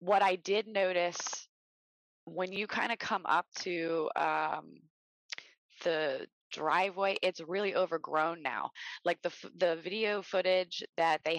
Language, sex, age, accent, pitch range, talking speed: English, female, 20-39, American, 155-190 Hz, 130 wpm